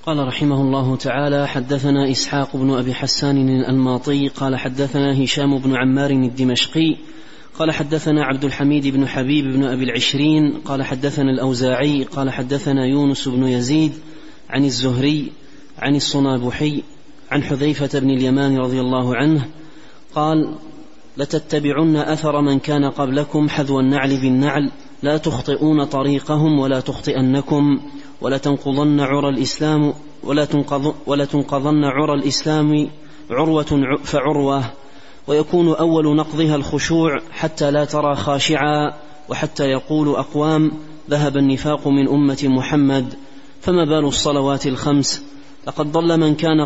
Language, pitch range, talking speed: Arabic, 135-150 Hz, 115 wpm